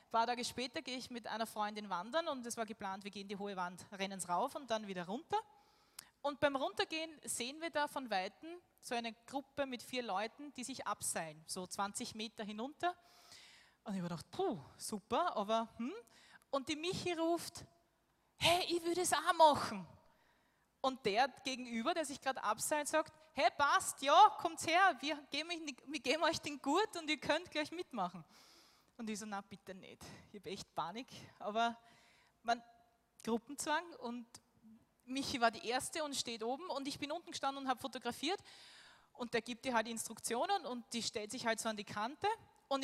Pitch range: 230-315 Hz